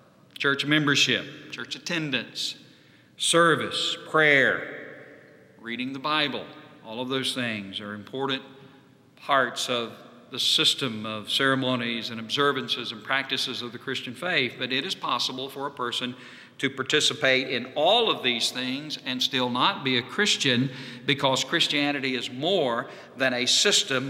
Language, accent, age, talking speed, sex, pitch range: English, American, 50-69, 140 wpm, male, 125-170 Hz